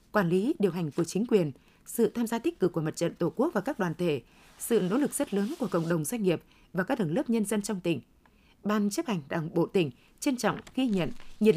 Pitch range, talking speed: 180-230 Hz, 260 wpm